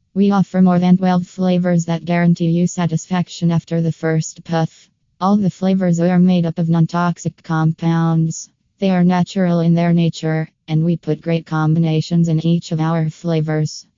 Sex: female